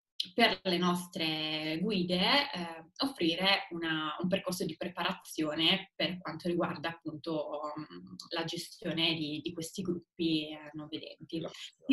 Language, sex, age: Italian, female, 20-39